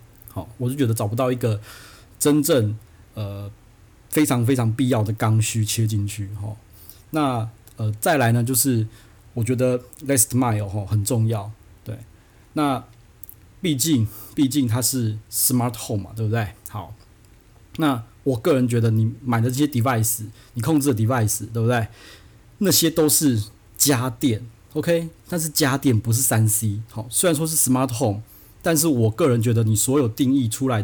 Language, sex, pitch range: Chinese, male, 110-135 Hz